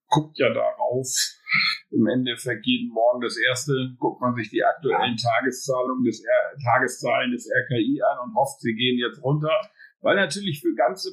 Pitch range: 130-175 Hz